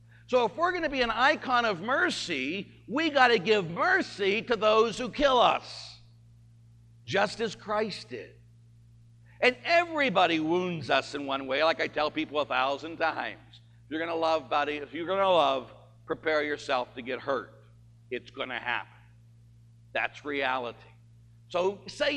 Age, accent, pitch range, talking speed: 60-79, American, 115-180 Hz, 170 wpm